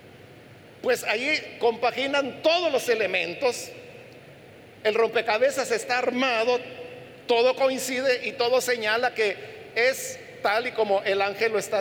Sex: male